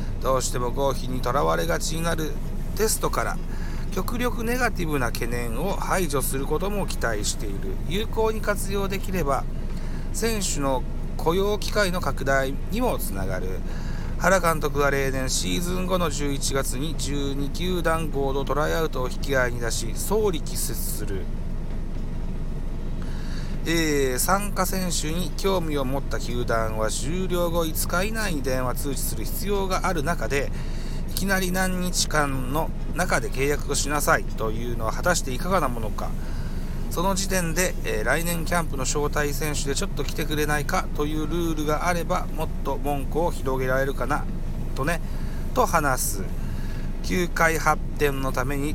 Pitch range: 135-175 Hz